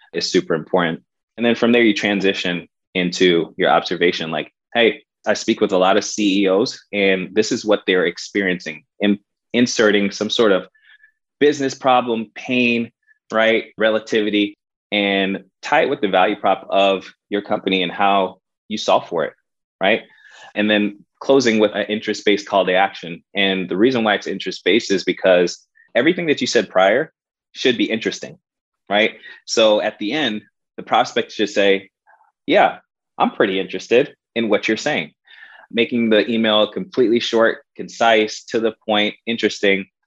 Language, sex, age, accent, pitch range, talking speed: English, male, 20-39, American, 100-115 Hz, 160 wpm